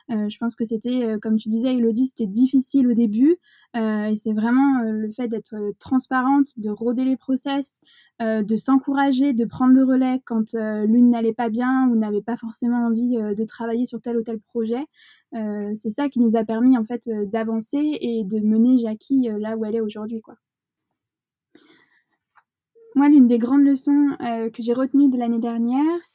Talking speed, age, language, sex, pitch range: 200 wpm, 20-39, French, female, 225-265 Hz